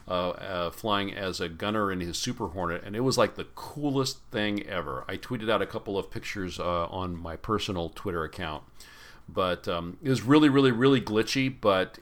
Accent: American